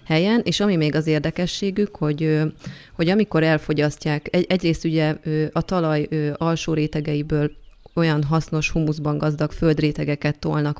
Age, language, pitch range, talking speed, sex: 30-49, Hungarian, 150-170 Hz, 115 wpm, female